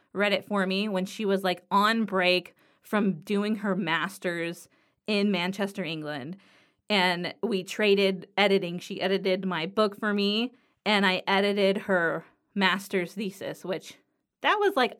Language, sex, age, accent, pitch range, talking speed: English, female, 20-39, American, 185-225 Hz, 150 wpm